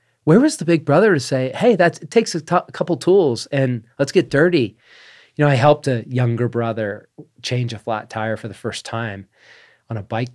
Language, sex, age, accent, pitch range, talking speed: English, male, 40-59, American, 115-135 Hz, 205 wpm